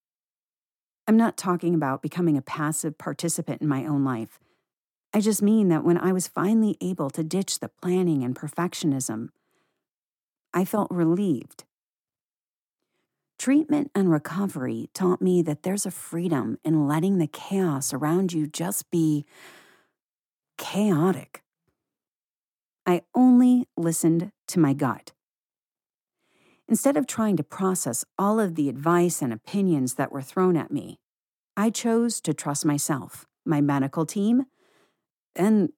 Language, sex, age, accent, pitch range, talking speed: English, female, 50-69, American, 150-195 Hz, 130 wpm